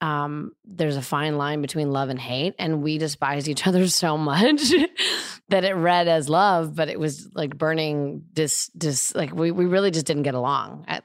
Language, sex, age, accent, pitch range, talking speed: English, female, 20-39, American, 145-180 Hz, 195 wpm